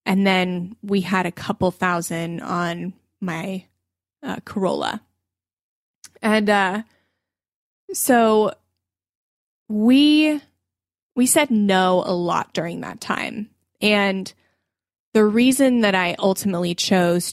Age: 20-39